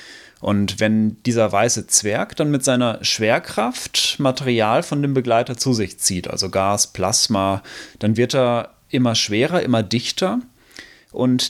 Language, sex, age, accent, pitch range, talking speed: German, male, 30-49, German, 115-145 Hz, 140 wpm